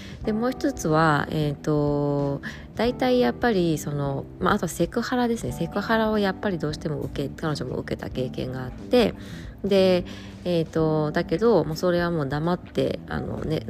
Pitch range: 145-190 Hz